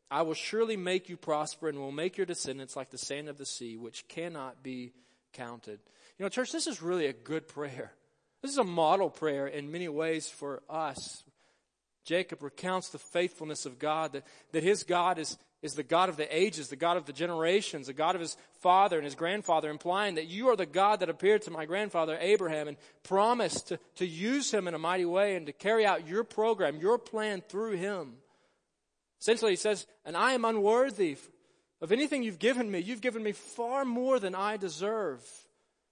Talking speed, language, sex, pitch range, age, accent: 205 wpm, English, male, 160-215 Hz, 40-59, American